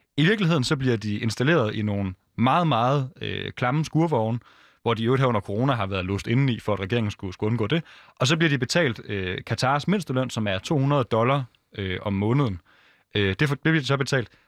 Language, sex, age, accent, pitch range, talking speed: Danish, male, 20-39, native, 105-135 Hz, 205 wpm